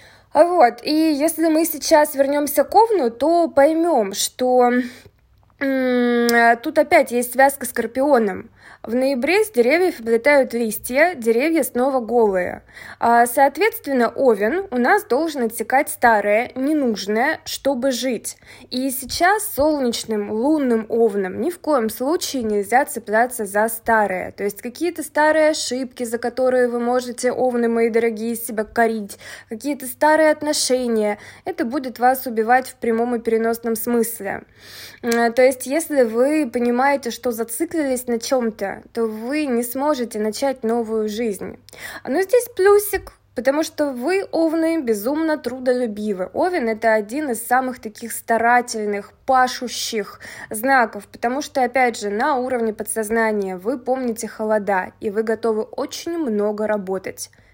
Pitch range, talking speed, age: 225-285 Hz, 130 wpm, 20-39